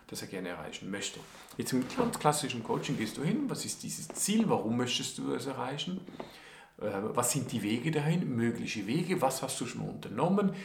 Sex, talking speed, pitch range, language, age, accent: male, 190 wpm, 130-185 Hz, German, 50-69, German